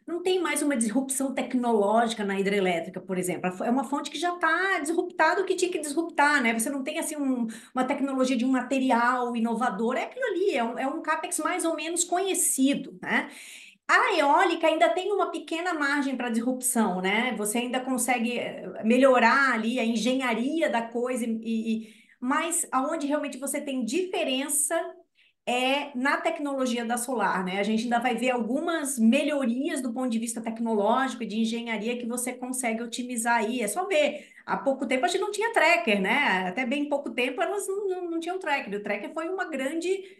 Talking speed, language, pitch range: 185 wpm, Portuguese, 225-290 Hz